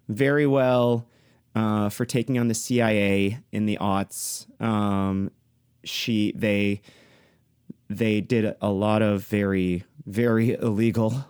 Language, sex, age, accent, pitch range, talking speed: English, male, 30-49, American, 105-125 Hz, 115 wpm